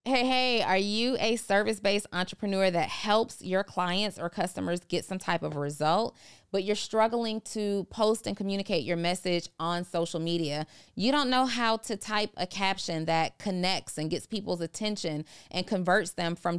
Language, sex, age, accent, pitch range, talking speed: English, female, 30-49, American, 165-210 Hz, 175 wpm